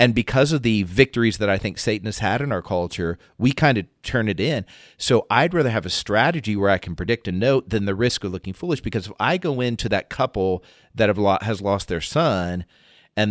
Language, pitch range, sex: English, 100-135 Hz, male